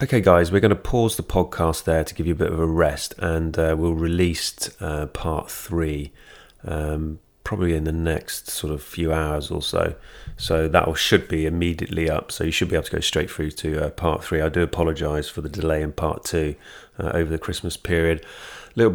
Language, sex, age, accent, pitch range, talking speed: English, male, 30-49, British, 80-95 Hz, 220 wpm